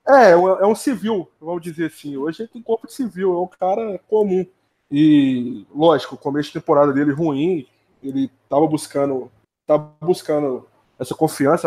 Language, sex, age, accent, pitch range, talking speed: Portuguese, male, 20-39, Brazilian, 140-175 Hz, 165 wpm